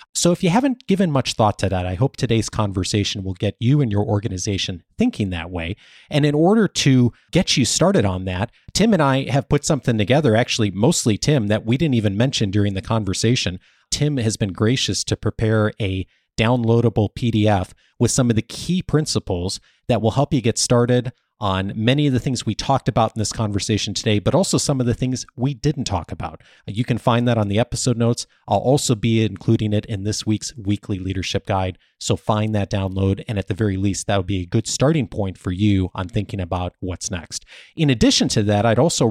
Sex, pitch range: male, 100-130 Hz